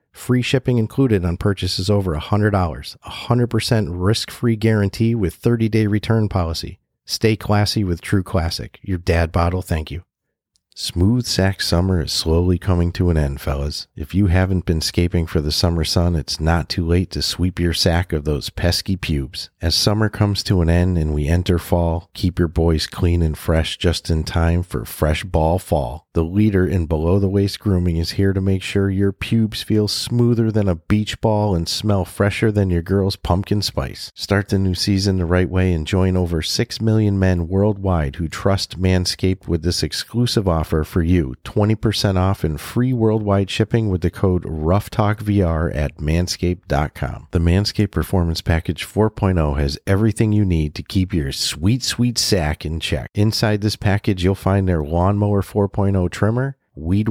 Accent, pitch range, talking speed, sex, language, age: American, 85-105 Hz, 175 wpm, male, English, 40-59